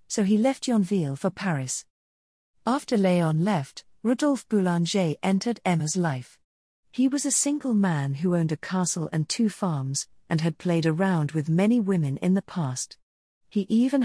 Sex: female